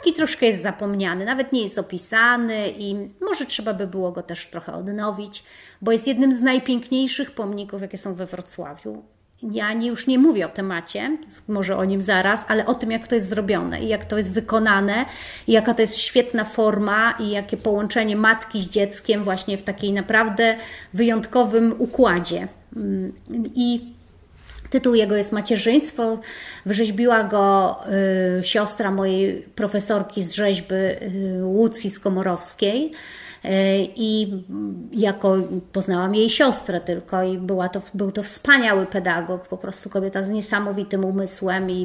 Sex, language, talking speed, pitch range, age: female, Polish, 145 wpm, 190-230 Hz, 30-49